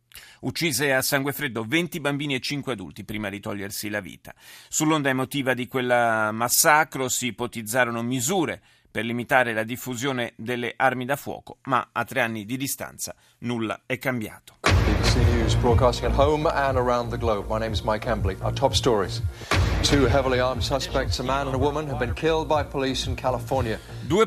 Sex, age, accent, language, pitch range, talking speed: male, 30-49, native, Italian, 115-150 Hz, 100 wpm